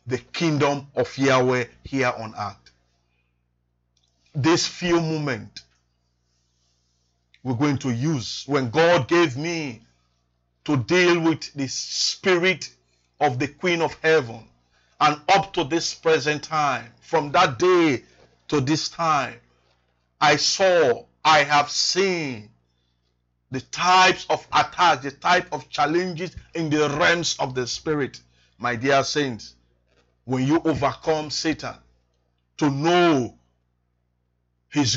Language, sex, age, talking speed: English, male, 50-69, 120 wpm